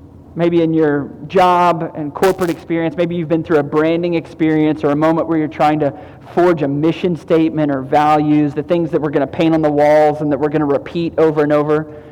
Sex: male